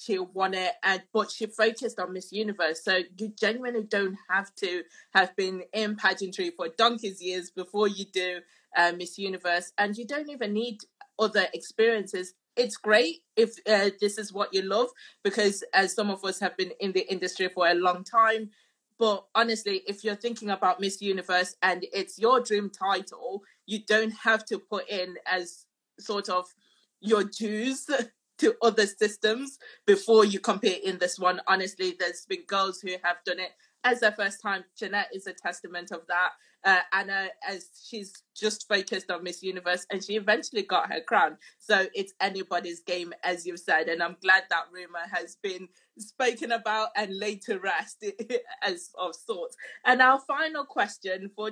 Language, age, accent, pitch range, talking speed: English, 20-39, British, 185-220 Hz, 175 wpm